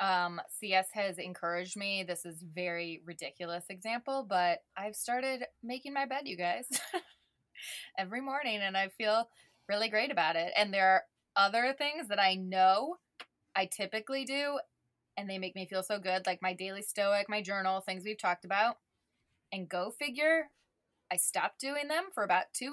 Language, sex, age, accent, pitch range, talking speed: English, female, 20-39, American, 190-245 Hz, 170 wpm